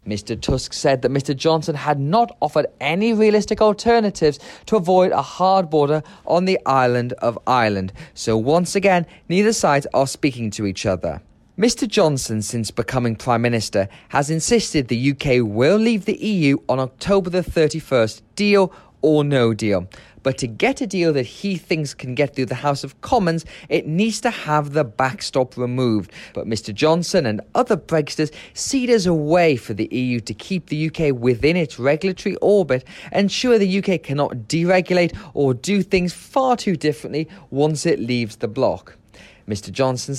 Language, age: English, 30-49